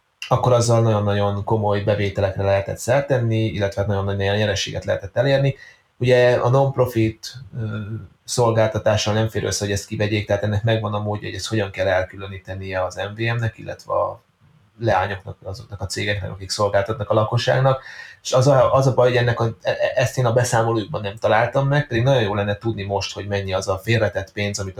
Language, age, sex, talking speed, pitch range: Hungarian, 30-49, male, 180 wpm, 100-115 Hz